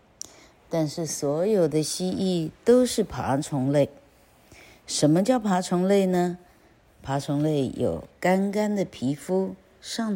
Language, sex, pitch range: Chinese, female, 130-180 Hz